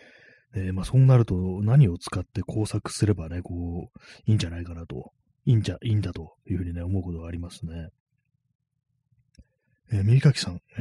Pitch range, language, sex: 90-130 Hz, Japanese, male